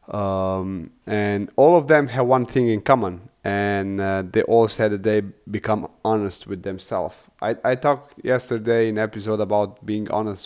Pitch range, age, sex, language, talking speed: 100-120 Hz, 30-49, male, English, 170 wpm